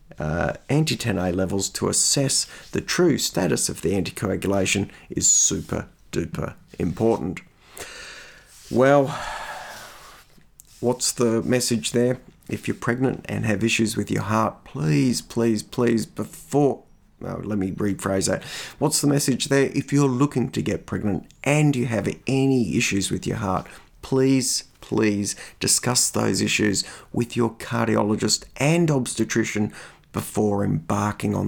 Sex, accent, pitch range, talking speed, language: male, Australian, 105-135 Hz, 135 wpm, English